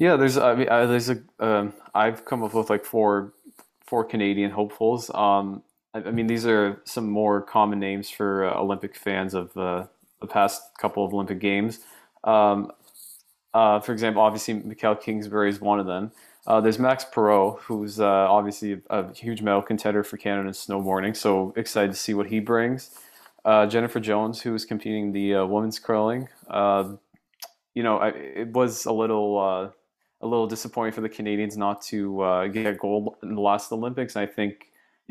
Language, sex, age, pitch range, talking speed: English, male, 20-39, 100-110 Hz, 190 wpm